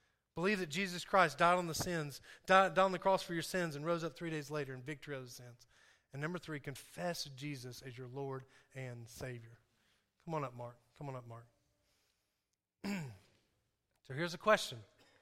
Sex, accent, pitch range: male, American, 115-175 Hz